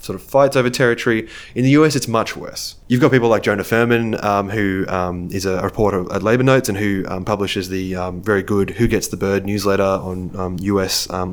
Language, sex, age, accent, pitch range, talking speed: English, male, 20-39, Australian, 100-120 Hz, 220 wpm